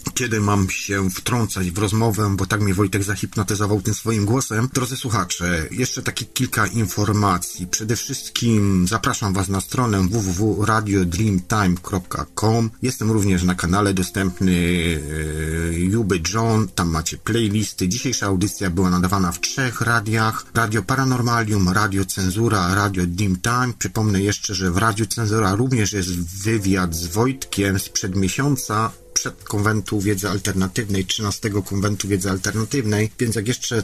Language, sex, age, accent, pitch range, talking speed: Polish, male, 40-59, native, 95-115 Hz, 135 wpm